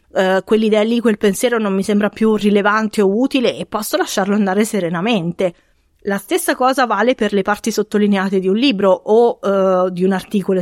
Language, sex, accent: Italian, female, native